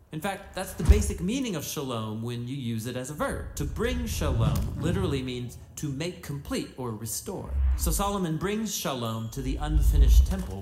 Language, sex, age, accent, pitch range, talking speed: English, male, 40-59, American, 105-160 Hz, 185 wpm